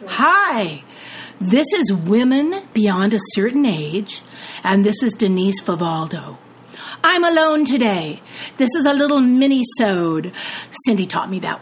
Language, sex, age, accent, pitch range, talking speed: English, female, 50-69, American, 195-275 Hz, 130 wpm